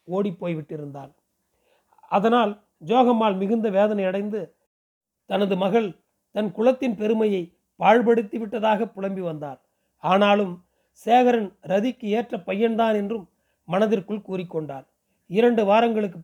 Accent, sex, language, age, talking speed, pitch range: native, male, Tamil, 40-59, 90 wpm, 185-225 Hz